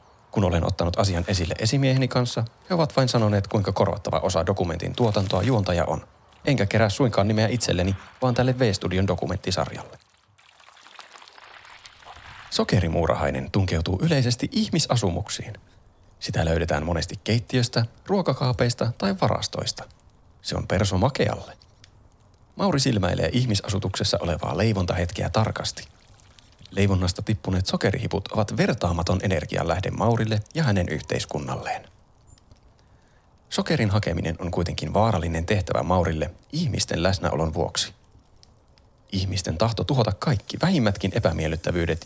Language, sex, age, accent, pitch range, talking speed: Finnish, male, 30-49, native, 90-115 Hz, 105 wpm